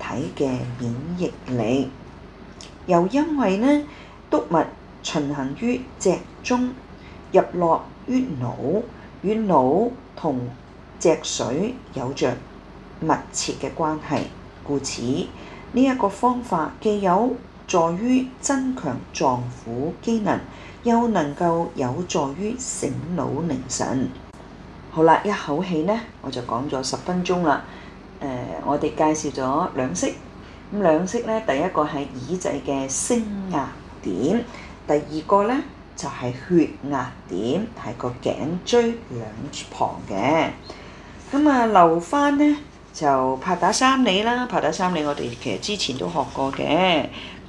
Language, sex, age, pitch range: Chinese, female, 40-59, 135-220 Hz